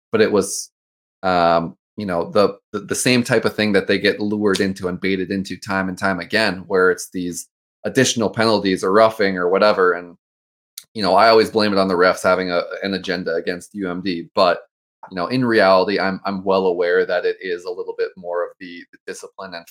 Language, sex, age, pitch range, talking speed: English, male, 20-39, 90-120 Hz, 215 wpm